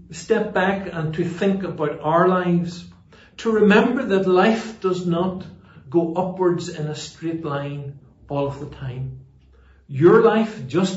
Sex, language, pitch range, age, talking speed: male, English, 110-185 Hz, 60-79, 150 wpm